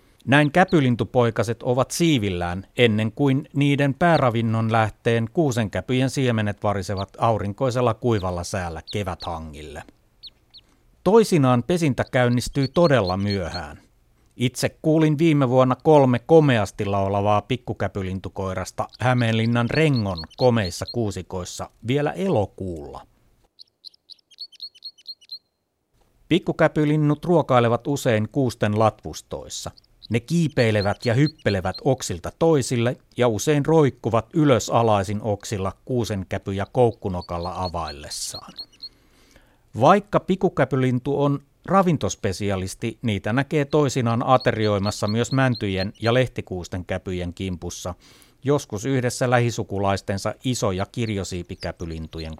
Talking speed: 90 wpm